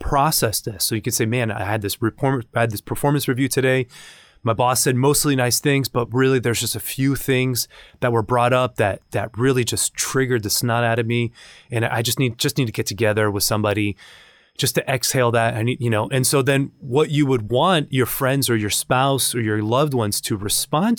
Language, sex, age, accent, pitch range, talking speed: English, male, 30-49, American, 105-130 Hz, 230 wpm